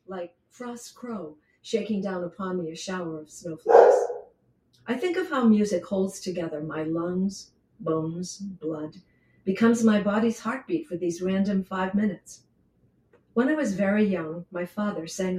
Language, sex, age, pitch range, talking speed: English, female, 50-69, 170-225 Hz, 150 wpm